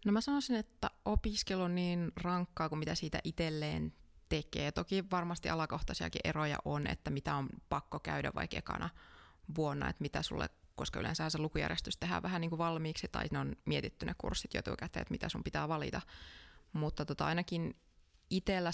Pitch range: 145-175 Hz